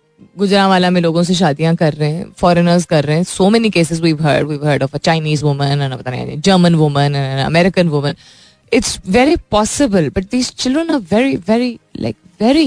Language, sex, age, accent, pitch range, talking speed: Hindi, female, 20-39, native, 160-230 Hz, 95 wpm